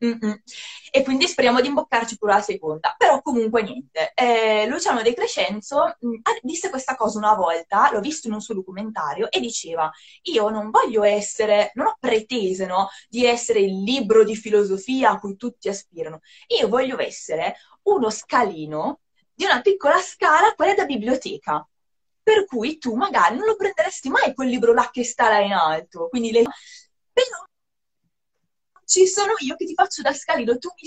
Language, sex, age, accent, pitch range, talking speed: Italian, female, 20-39, native, 210-305 Hz, 170 wpm